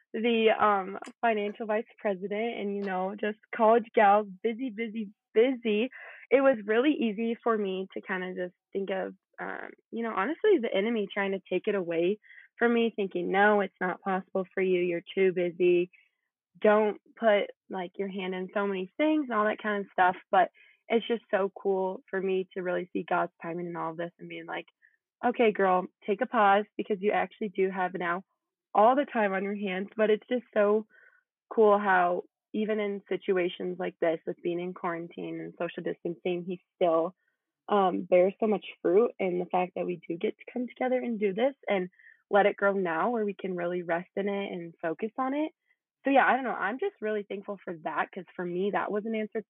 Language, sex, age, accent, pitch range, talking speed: English, female, 20-39, American, 180-220 Hz, 210 wpm